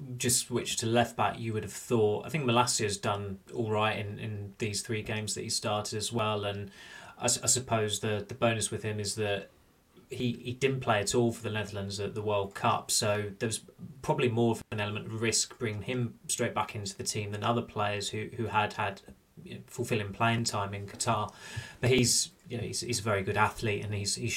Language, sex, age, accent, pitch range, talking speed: English, male, 20-39, British, 105-120 Hz, 230 wpm